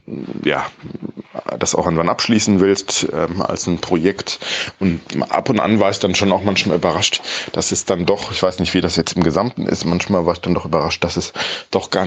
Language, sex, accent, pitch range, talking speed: German, male, German, 85-100 Hz, 220 wpm